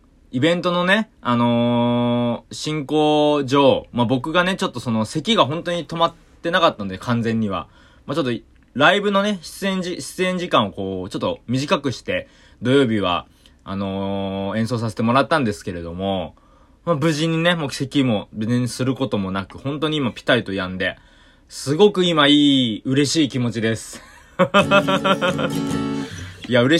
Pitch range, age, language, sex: 110-155 Hz, 20-39, Japanese, male